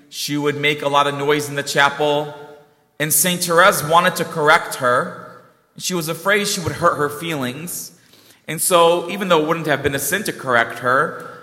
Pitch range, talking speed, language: 145-180 Hz, 200 wpm, English